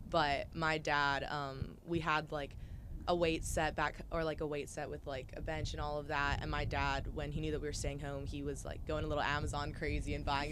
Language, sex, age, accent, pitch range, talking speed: English, female, 20-39, American, 135-155 Hz, 255 wpm